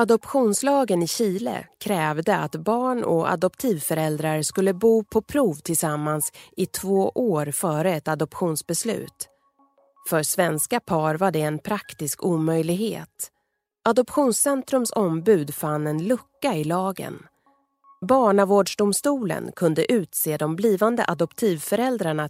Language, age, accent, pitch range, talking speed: Swedish, 30-49, native, 160-230 Hz, 110 wpm